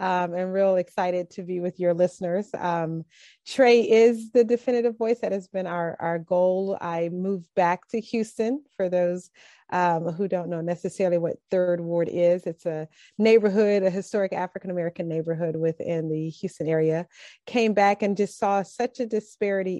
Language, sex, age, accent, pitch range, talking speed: English, female, 30-49, American, 175-210 Hz, 170 wpm